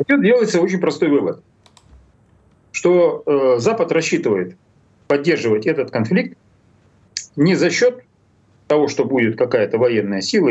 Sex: male